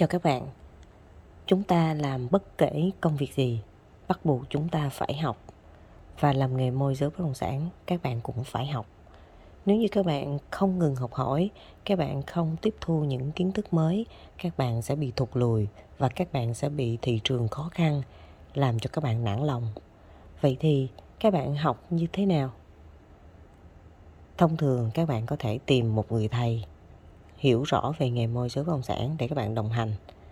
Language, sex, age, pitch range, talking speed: Vietnamese, female, 20-39, 110-155 Hz, 195 wpm